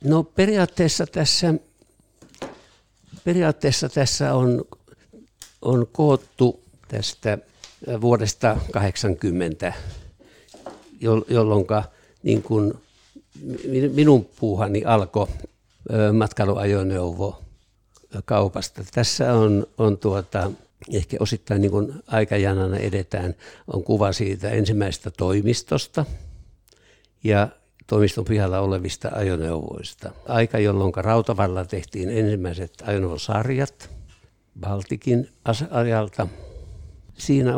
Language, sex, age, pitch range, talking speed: Finnish, male, 60-79, 100-125 Hz, 75 wpm